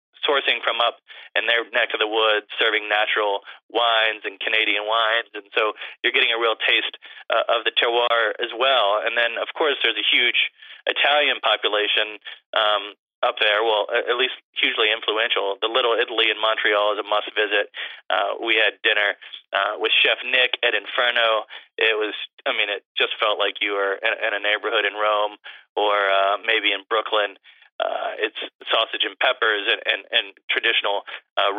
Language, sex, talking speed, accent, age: English, male, 175 wpm, American, 30-49